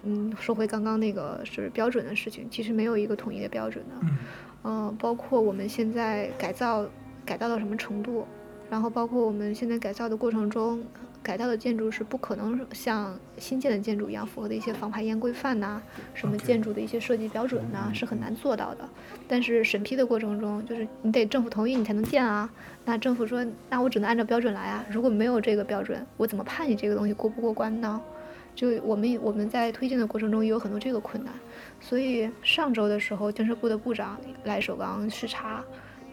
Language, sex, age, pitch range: Chinese, female, 20-39, 210-235 Hz